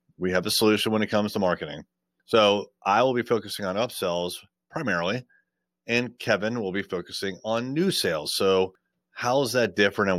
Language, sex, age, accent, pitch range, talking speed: English, male, 30-49, American, 90-110 Hz, 185 wpm